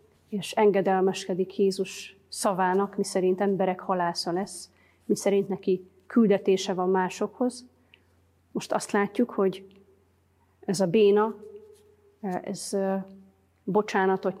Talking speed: 100 wpm